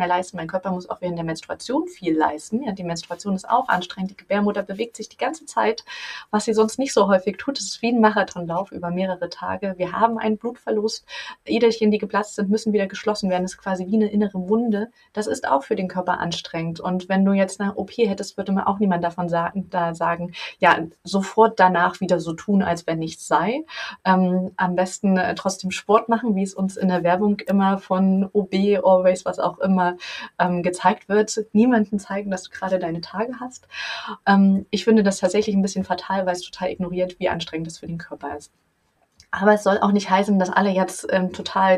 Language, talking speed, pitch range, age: German, 205 wpm, 180-215 Hz, 30-49